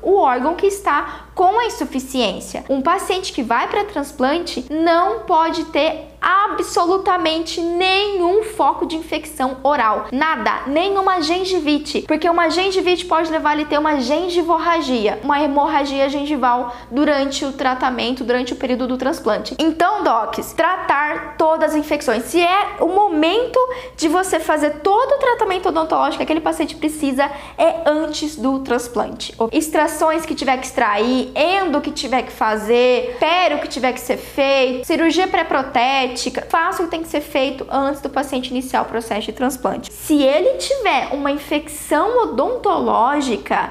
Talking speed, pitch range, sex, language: 150 wpm, 270-350 Hz, female, Portuguese